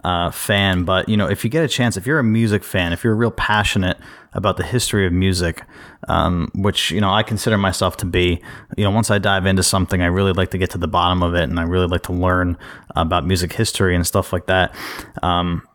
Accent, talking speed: American, 245 wpm